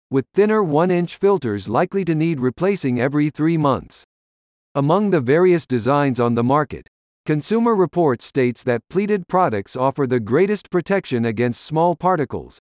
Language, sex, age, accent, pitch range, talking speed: English, male, 50-69, American, 125-175 Hz, 145 wpm